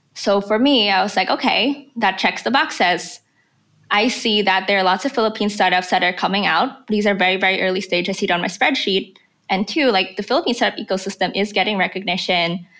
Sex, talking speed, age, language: female, 205 wpm, 20-39, English